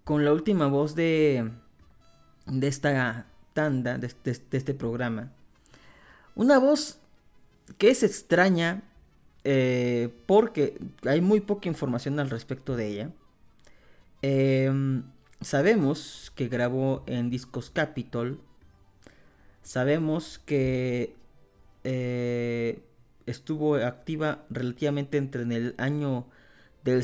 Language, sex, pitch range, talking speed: Spanish, male, 115-150 Hz, 100 wpm